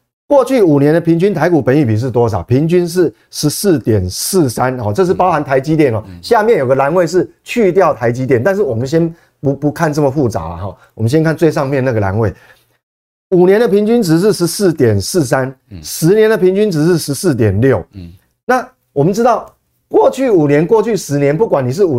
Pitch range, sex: 125-185 Hz, male